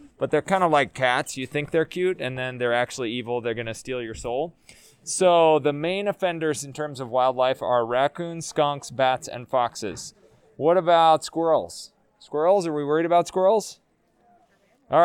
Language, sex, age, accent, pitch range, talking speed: English, male, 20-39, American, 130-170 Hz, 180 wpm